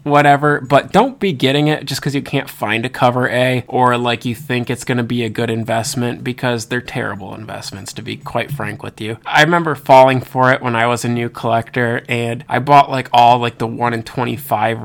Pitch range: 120-140 Hz